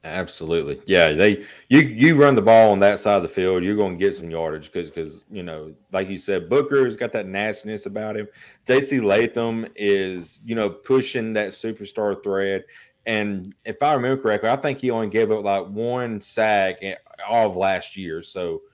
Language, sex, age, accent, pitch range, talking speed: English, male, 30-49, American, 95-110 Hz, 195 wpm